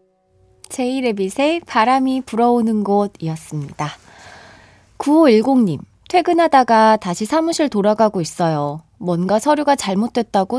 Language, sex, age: Korean, female, 20-39